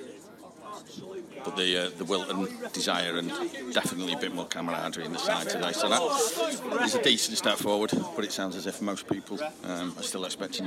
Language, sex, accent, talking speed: English, male, British, 190 wpm